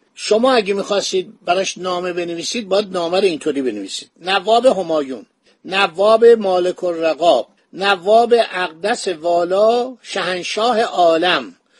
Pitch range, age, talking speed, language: 180-235 Hz, 60-79, 100 wpm, Persian